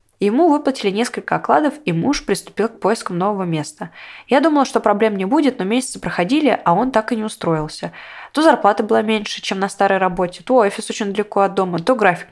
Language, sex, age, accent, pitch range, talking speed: Russian, female, 20-39, native, 180-240 Hz, 205 wpm